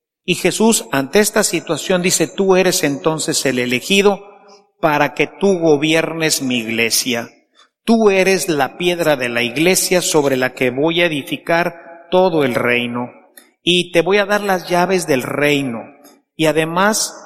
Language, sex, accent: Spanish, male, Mexican